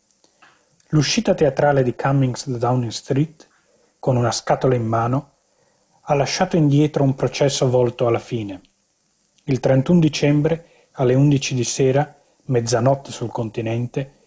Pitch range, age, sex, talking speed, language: 120-140 Hz, 30-49, male, 125 wpm, Italian